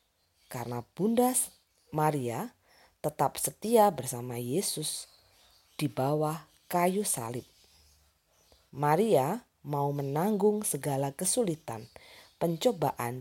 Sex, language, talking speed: female, Indonesian, 75 wpm